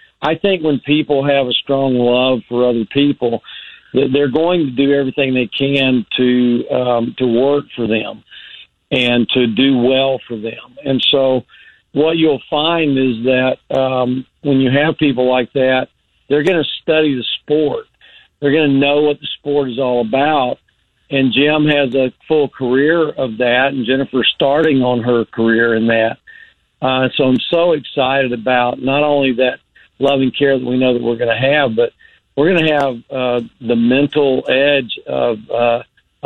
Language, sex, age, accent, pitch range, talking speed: English, male, 50-69, American, 120-140 Hz, 175 wpm